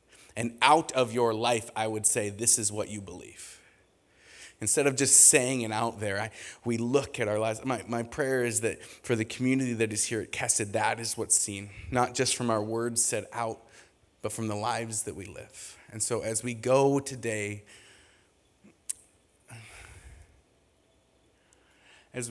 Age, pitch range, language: 20-39, 105-125 Hz, English